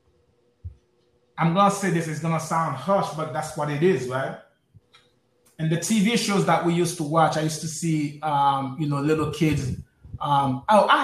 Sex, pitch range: male, 150-215 Hz